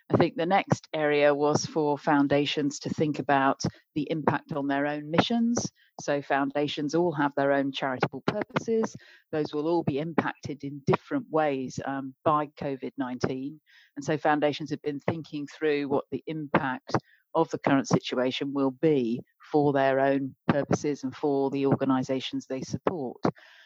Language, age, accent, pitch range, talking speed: English, 40-59, British, 135-165 Hz, 155 wpm